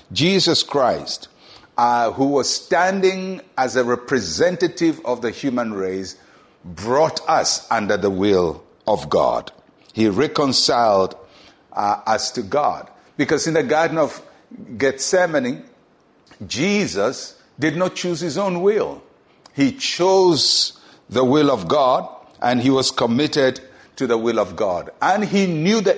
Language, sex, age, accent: English, male, 60-79, Nigerian